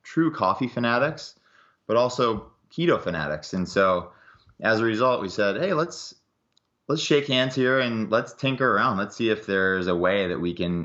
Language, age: English, 20-39